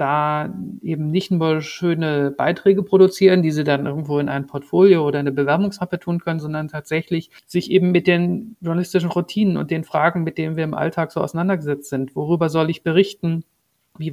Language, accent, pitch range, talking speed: German, German, 155-185 Hz, 185 wpm